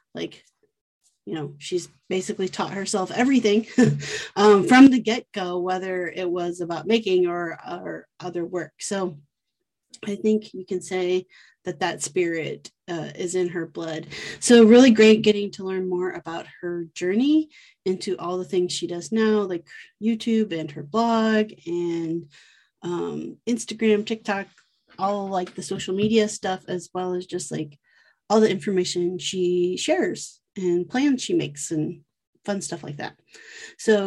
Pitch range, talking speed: 175-215 Hz, 155 wpm